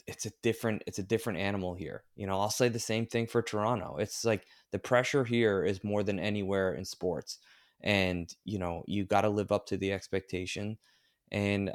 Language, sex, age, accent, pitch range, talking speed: English, male, 20-39, American, 90-105 Hz, 205 wpm